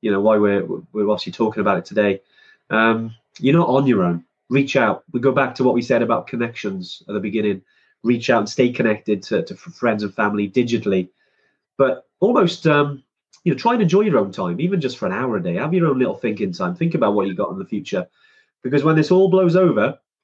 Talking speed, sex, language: 235 wpm, male, English